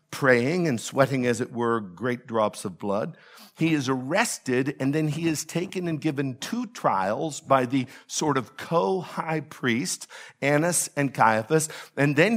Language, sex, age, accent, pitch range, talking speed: English, male, 50-69, American, 125-160 Hz, 160 wpm